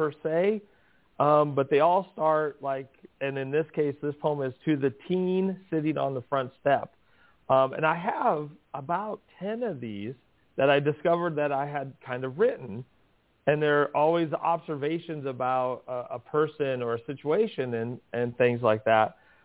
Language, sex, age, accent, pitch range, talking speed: English, male, 40-59, American, 120-155 Hz, 175 wpm